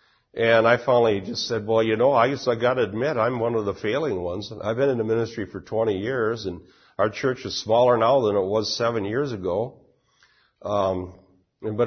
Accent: American